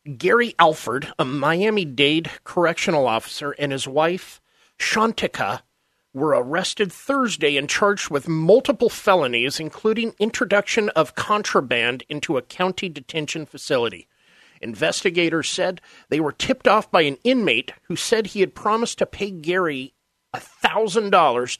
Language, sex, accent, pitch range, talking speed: English, male, American, 145-205 Hz, 125 wpm